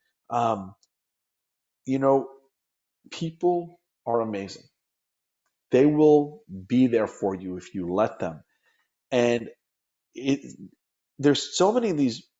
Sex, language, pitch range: male, English, 120-195 Hz